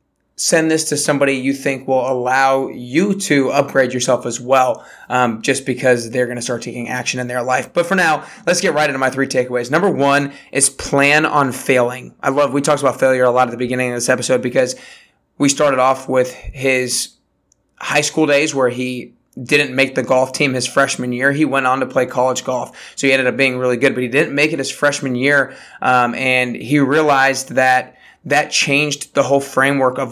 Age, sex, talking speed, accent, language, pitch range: 20-39, male, 215 wpm, American, English, 130-145 Hz